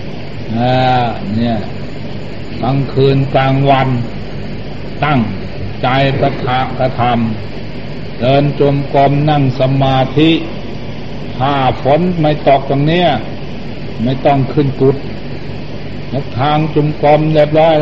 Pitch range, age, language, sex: 120-145 Hz, 60-79, Thai, male